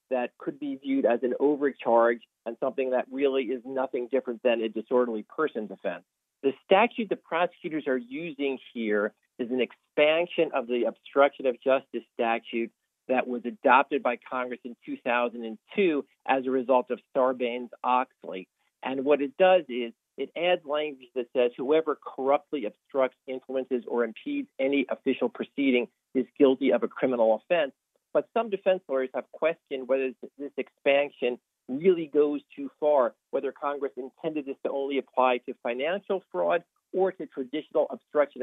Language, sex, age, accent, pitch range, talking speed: English, male, 40-59, American, 125-150 Hz, 155 wpm